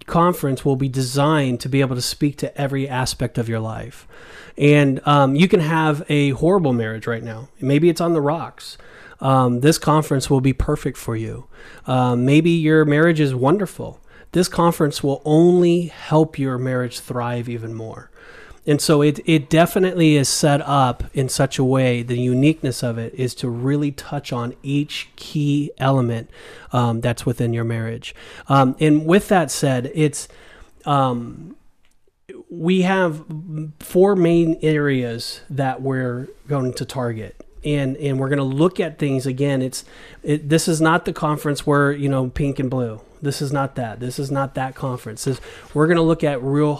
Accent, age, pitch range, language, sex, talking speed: American, 30-49, 130-155 Hz, English, male, 175 wpm